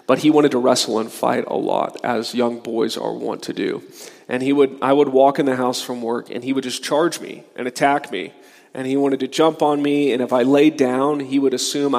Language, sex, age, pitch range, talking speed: English, male, 30-49, 135-160 Hz, 255 wpm